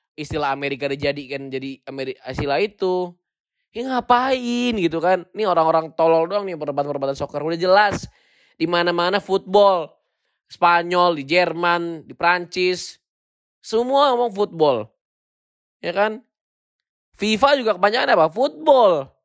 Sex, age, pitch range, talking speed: male, 20-39, 130-180 Hz, 130 wpm